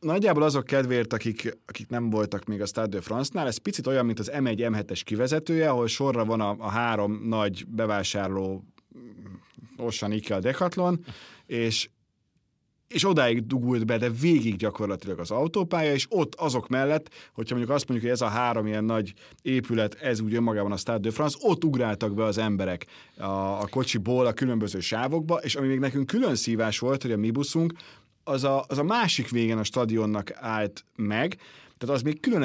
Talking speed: 180 wpm